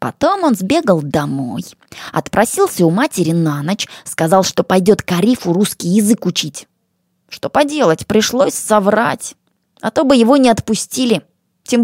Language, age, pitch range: Russian, 20-39, 165-245 Hz